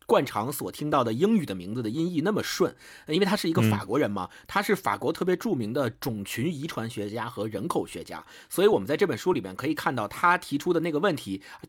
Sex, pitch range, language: male, 120-180 Hz, Chinese